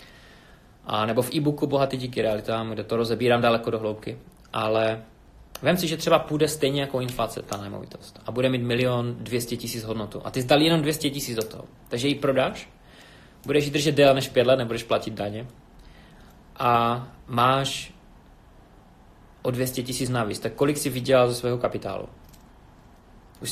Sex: male